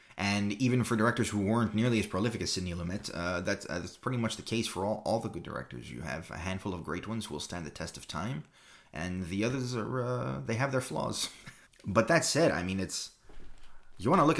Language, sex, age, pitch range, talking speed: English, male, 30-49, 90-115 Hz, 245 wpm